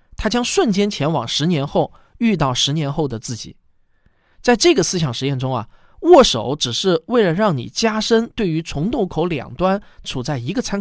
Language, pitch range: Chinese, 125-195 Hz